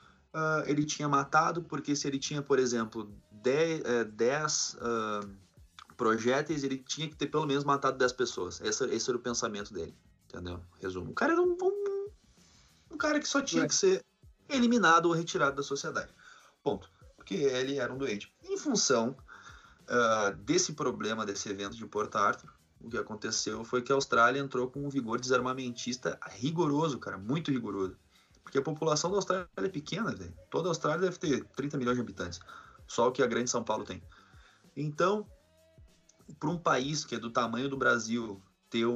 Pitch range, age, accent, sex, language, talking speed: 110-155 Hz, 20-39, Brazilian, male, Portuguese, 175 wpm